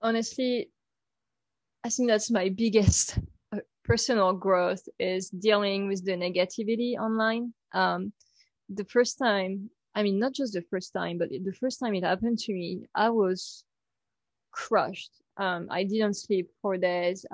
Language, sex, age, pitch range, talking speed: English, female, 20-39, 185-225 Hz, 145 wpm